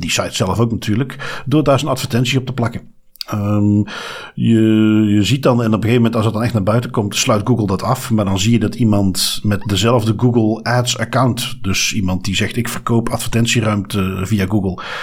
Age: 50-69